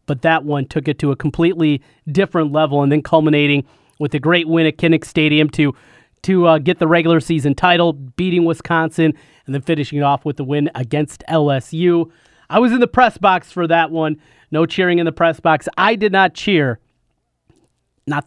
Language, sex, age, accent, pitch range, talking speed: English, male, 30-49, American, 145-170 Hz, 195 wpm